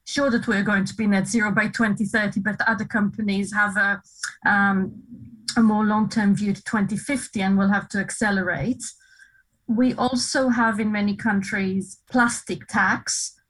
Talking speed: 150 wpm